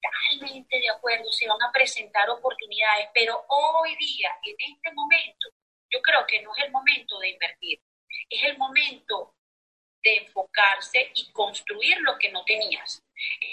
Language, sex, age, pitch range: Spanish, female, 30-49, 210-280 Hz